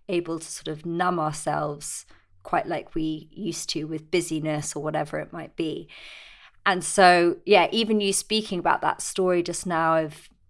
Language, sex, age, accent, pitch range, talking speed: English, female, 20-39, British, 160-195 Hz, 170 wpm